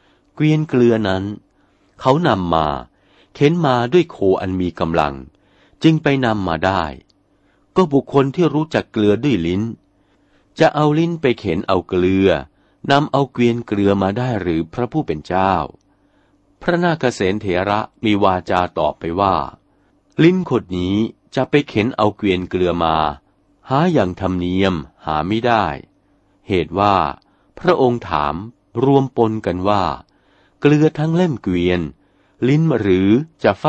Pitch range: 90-130 Hz